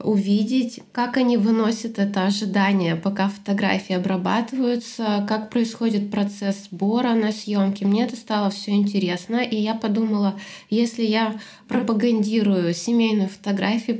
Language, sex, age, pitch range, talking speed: Russian, female, 20-39, 200-225 Hz, 120 wpm